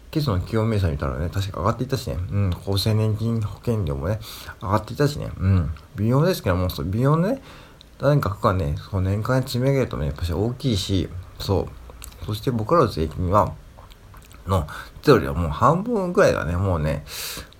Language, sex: Japanese, male